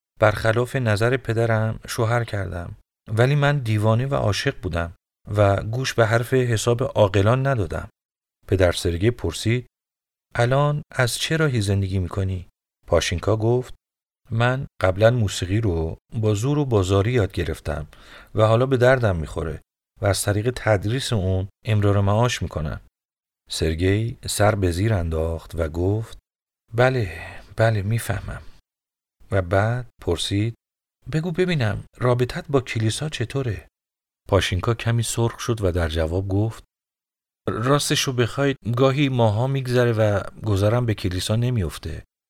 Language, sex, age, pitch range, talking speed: Persian, male, 40-59, 95-120 Hz, 125 wpm